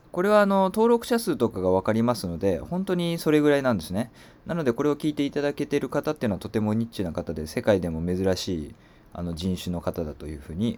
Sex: male